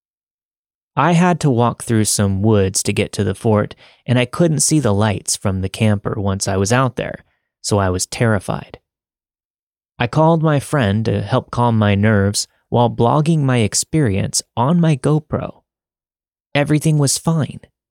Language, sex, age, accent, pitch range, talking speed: English, male, 30-49, American, 105-135 Hz, 165 wpm